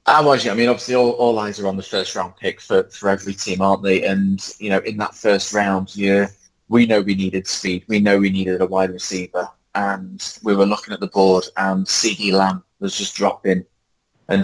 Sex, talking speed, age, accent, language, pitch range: male, 215 wpm, 20-39, British, English, 95-110 Hz